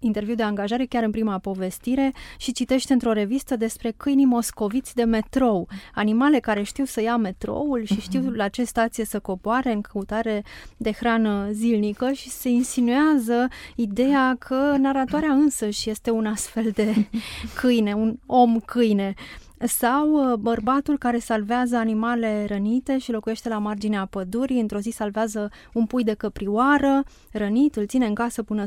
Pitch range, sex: 210-250 Hz, female